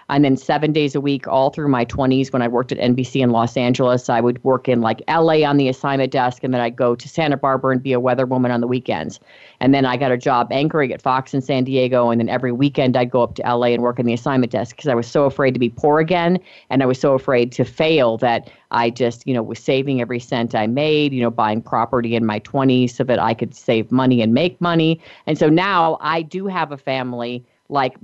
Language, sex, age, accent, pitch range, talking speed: English, female, 40-59, American, 120-145 Hz, 260 wpm